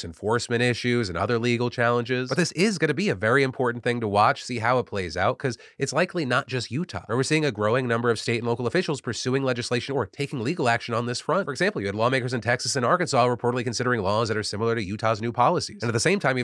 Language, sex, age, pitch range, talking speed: English, male, 30-49, 115-145 Hz, 265 wpm